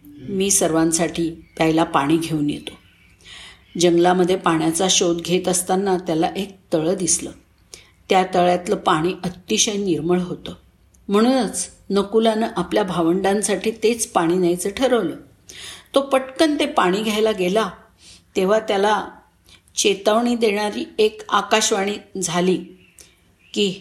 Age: 50-69